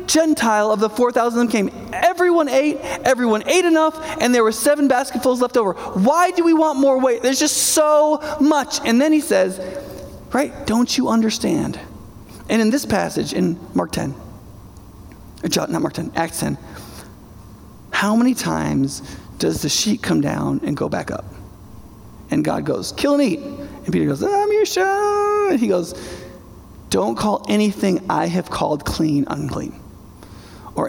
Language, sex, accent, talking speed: English, male, American, 165 wpm